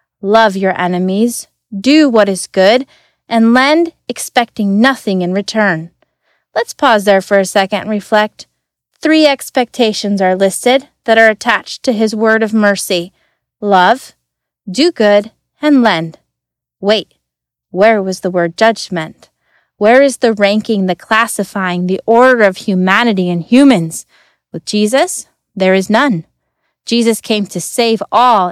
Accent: American